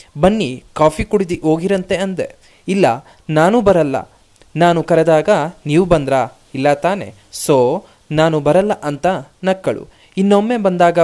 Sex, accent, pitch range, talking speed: male, native, 160-210 Hz, 115 wpm